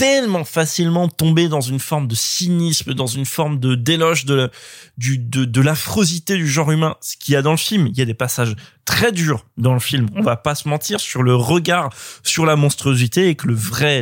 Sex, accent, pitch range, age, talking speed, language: male, French, 125-165 Hz, 20-39, 230 wpm, French